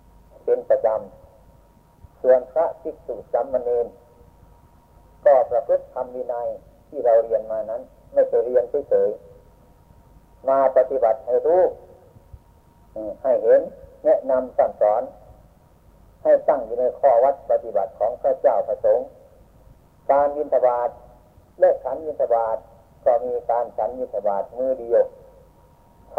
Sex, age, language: male, 50-69, Thai